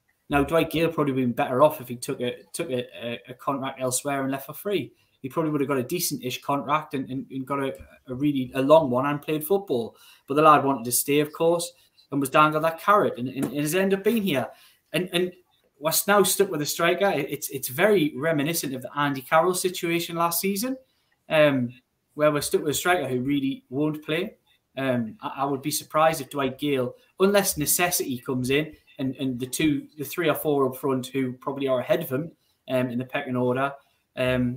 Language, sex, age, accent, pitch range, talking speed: English, male, 10-29, British, 130-170 Hz, 225 wpm